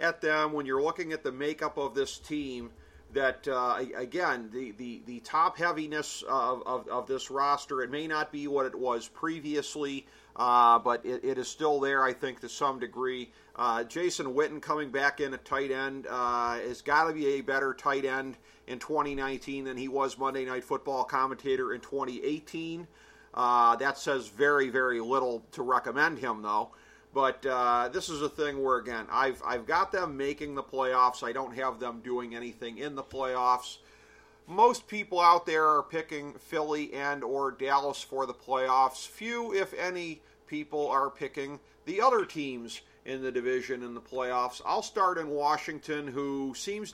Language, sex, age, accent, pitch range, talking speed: English, male, 40-59, American, 125-150 Hz, 180 wpm